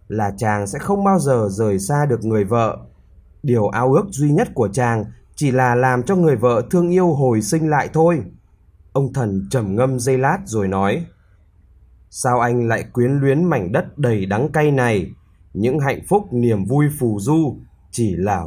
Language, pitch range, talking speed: Vietnamese, 100-150 Hz, 190 wpm